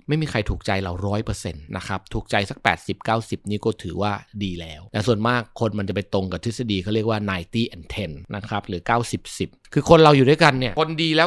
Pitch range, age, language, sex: 105-135 Hz, 20-39, Thai, male